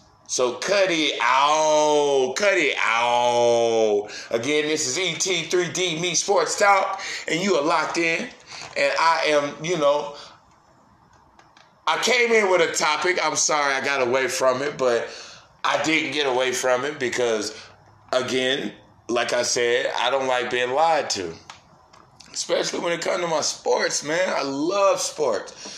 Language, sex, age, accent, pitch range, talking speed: English, male, 20-39, American, 125-180 Hz, 155 wpm